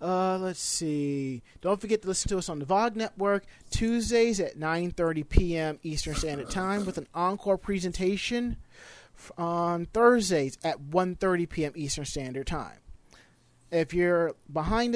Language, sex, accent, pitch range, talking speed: English, male, American, 140-185 Hz, 140 wpm